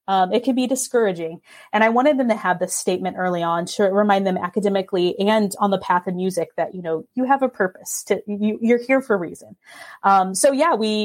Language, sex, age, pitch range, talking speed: English, female, 30-49, 185-230 Hz, 230 wpm